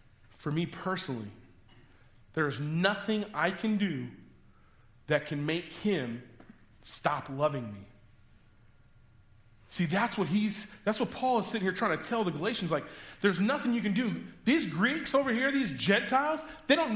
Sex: male